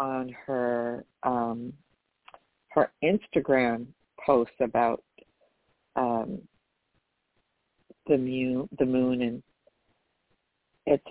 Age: 50-69